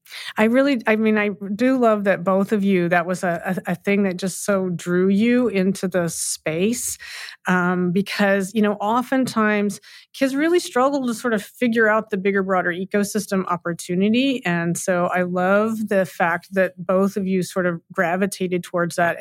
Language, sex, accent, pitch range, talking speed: English, female, American, 185-225 Hz, 180 wpm